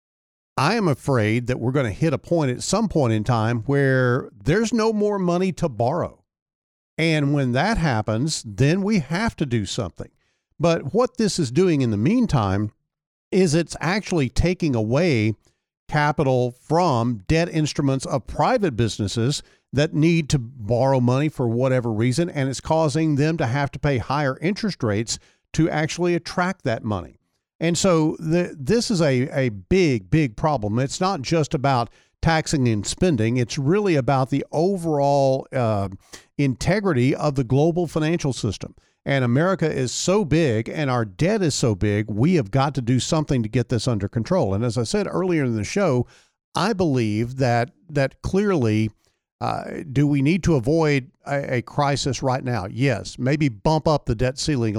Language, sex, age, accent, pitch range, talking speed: English, male, 50-69, American, 120-165 Hz, 170 wpm